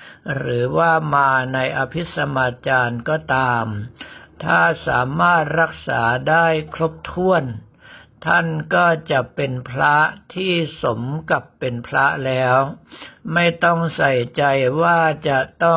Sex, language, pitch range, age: male, Thai, 125-160 Hz, 60-79